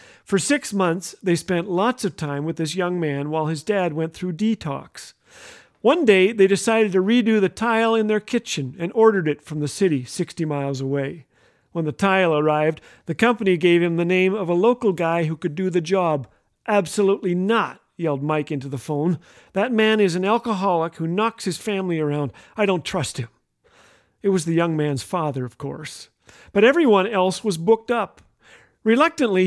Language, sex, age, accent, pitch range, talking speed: English, male, 50-69, American, 155-210 Hz, 190 wpm